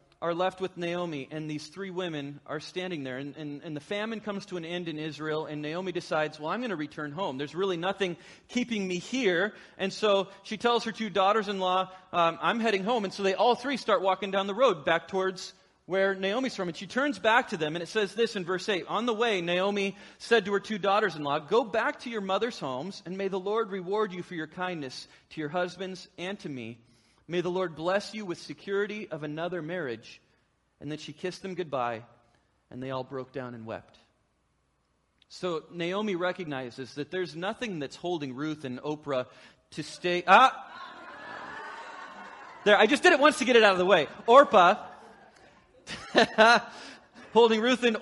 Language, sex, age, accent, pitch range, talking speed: English, male, 30-49, American, 165-225 Hz, 195 wpm